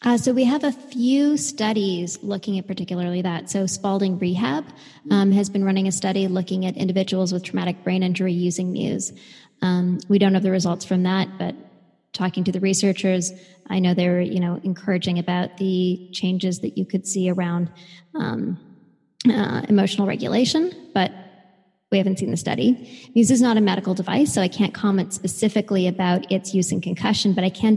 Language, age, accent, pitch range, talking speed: English, 20-39, American, 180-200 Hz, 185 wpm